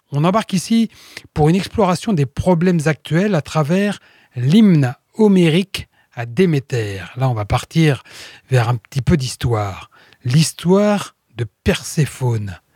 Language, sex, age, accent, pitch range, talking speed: French, male, 40-59, French, 135-180 Hz, 125 wpm